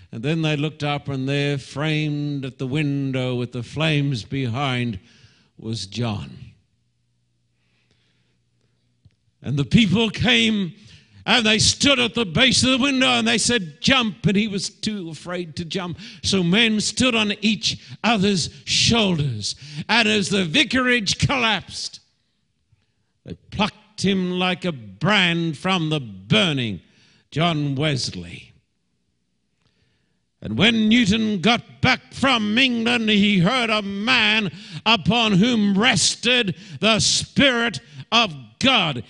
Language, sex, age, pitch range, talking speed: English, male, 60-79, 140-220 Hz, 125 wpm